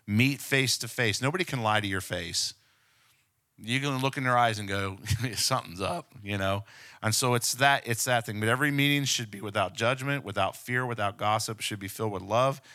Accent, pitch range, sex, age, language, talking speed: American, 105-125 Hz, male, 50-69, English, 210 wpm